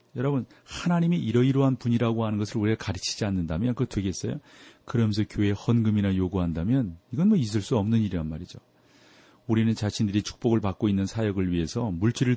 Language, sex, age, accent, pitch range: Korean, male, 40-59, native, 100-130 Hz